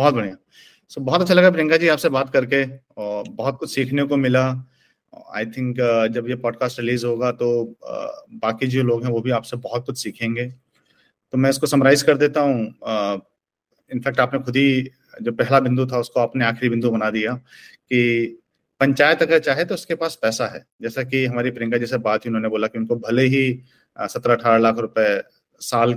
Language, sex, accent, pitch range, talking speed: Hindi, male, native, 120-150 Hz, 115 wpm